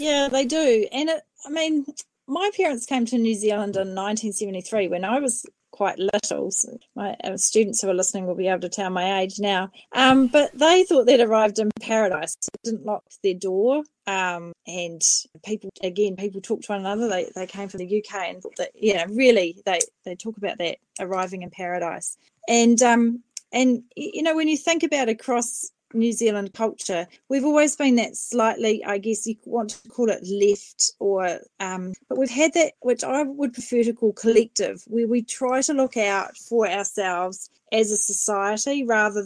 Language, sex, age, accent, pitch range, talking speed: English, female, 30-49, Australian, 200-255 Hz, 195 wpm